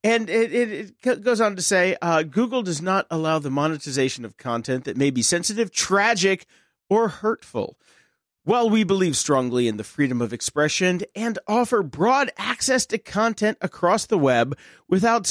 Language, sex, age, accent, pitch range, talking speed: English, male, 40-59, American, 130-215 Hz, 170 wpm